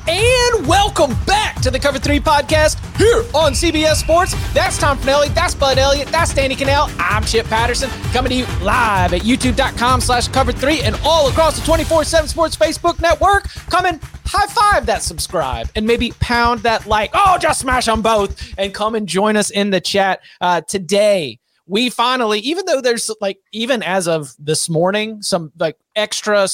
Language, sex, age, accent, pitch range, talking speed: English, male, 30-49, American, 190-245 Hz, 185 wpm